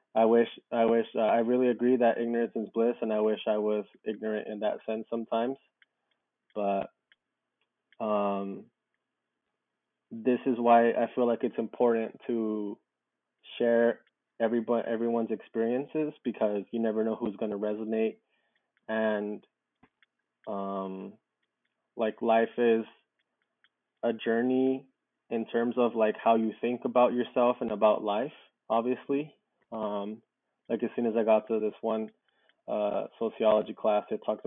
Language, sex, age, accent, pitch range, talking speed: English, male, 20-39, American, 110-120 Hz, 140 wpm